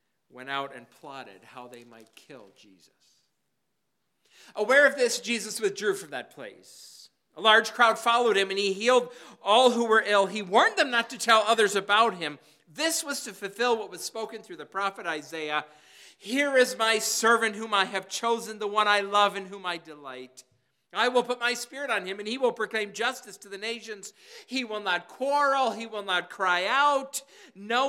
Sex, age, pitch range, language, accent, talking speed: male, 50-69, 145-230 Hz, English, American, 195 wpm